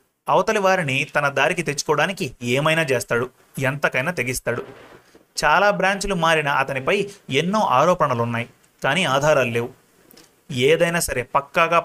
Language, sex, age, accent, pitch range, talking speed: Telugu, male, 30-49, native, 130-170 Hz, 105 wpm